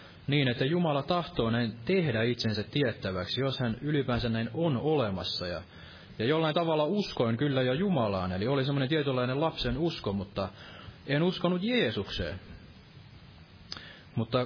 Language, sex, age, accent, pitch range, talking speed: Finnish, male, 30-49, native, 105-145 Hz, 135 wpm